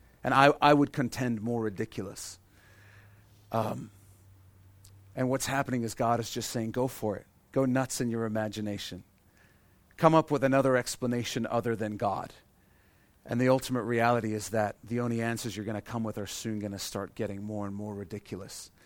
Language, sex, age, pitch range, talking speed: English, male, 40-59, 100-130 Hz, 180 wpm